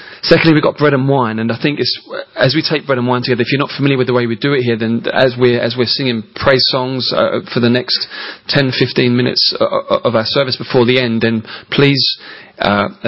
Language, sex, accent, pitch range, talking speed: English, male, British, 115-155 Hz, 225 wpm